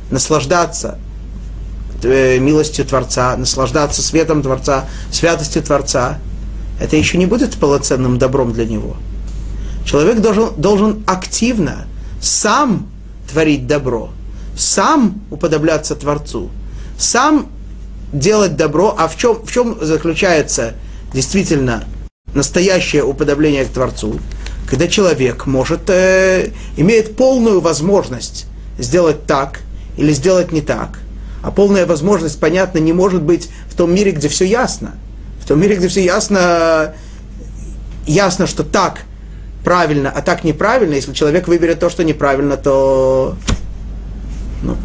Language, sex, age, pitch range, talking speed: Russian, male, 30-49, 125-180 Hz, 115 wpm